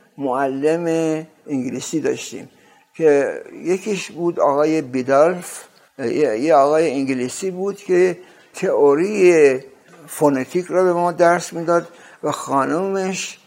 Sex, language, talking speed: male, Persian, 100 wpm